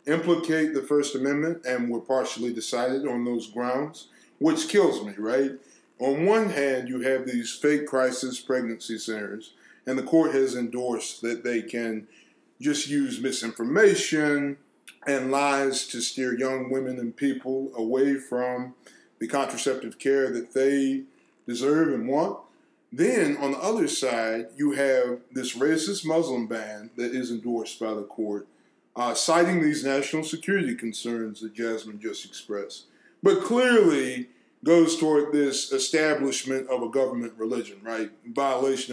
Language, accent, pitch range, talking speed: English, American, 120-150 Hz, 145 wpm